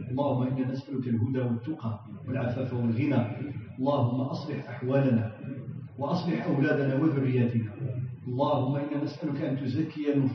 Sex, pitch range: male, 130-150 Hz